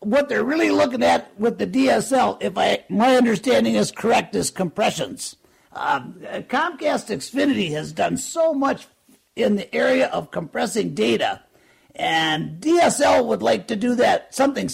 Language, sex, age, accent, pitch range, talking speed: English, male, 60-79, American, 210-280 Hz, 150 wpm